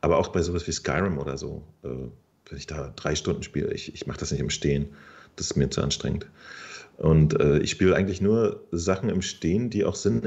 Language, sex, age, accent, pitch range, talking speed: German, male, 40-59, German, 80-100 Hz, 230 wpm